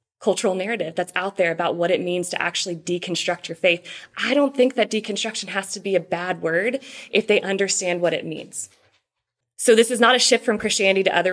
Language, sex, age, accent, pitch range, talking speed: English, female, 20-39, American, 180-210 Hz, 215 wpm